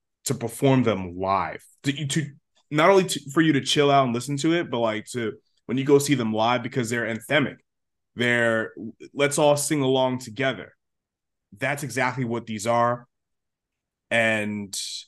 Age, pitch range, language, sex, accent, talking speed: 20-39, 115-140 Hz, English, male, American, 165 wpm